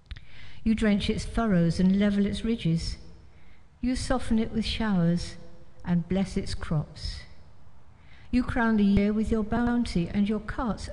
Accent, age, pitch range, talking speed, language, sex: British, 60-79, 150-215 Hz, 150 wpm, English, female